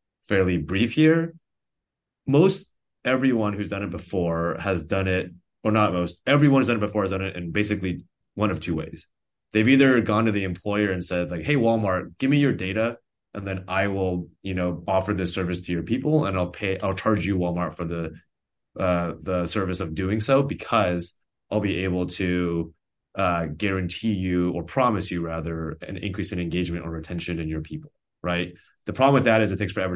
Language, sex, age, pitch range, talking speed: English, male, 30-49, 85-110 Hz, 200 wpm